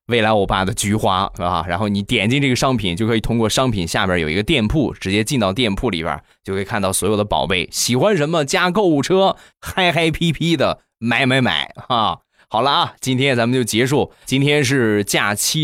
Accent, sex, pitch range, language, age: native, male, 100-135 Hz, Chinese, 20-39